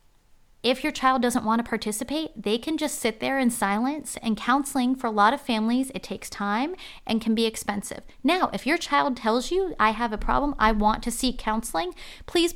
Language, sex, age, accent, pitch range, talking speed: English, female, 30-49, American, 215-270 Hz, 210 wpm